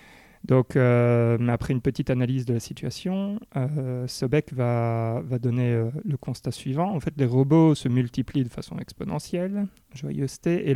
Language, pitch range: French, 125-150 Hz